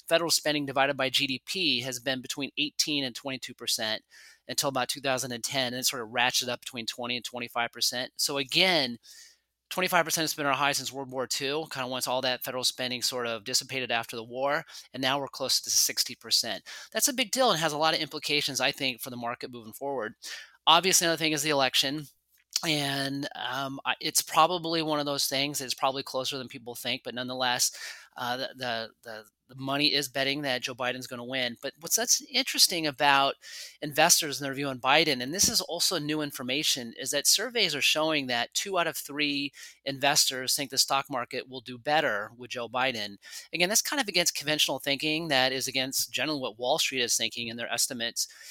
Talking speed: 205 wpm